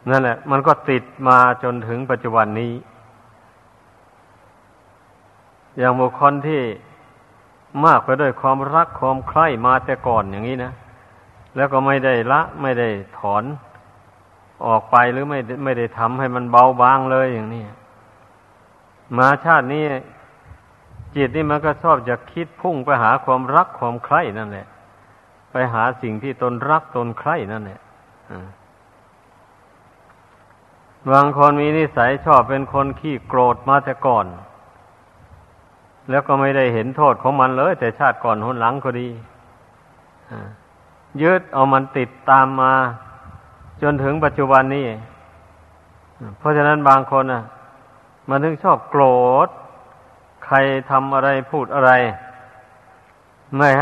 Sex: male